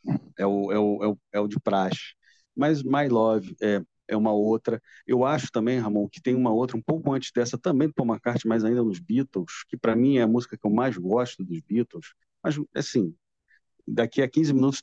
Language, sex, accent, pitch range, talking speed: Portuguese, male, Brazilian, 95-120 Hz, 225 wpm